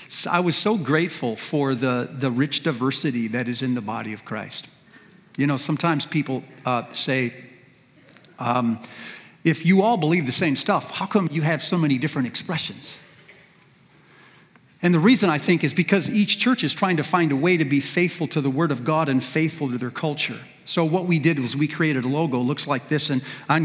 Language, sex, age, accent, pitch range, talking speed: English, male, 50-69, American, 140-165 Hz, 205 wpm